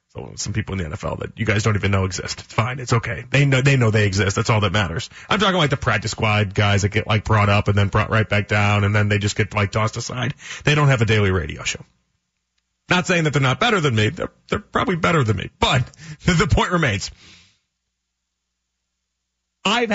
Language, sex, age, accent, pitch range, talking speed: English, male, 40-59, American, 120-195 Hz, 235 wpm